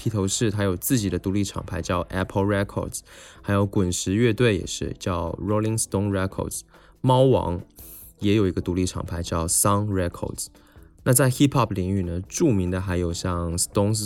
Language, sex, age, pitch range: Chinese, male, 20-39, 90-110 Hz